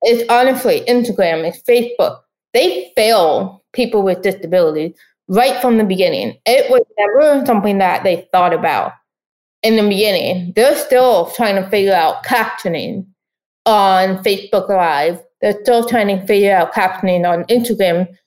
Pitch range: 190-240 Hz